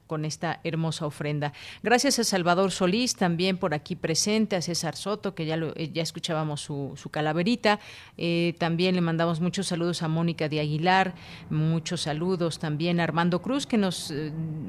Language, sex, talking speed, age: Spanish, female, 170 wpm, 40-59